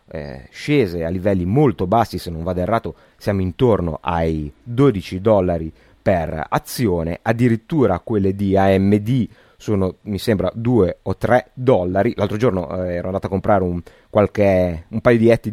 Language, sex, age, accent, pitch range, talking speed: Italian, male, 30-49, native, 90-115 Hz, 160 wpm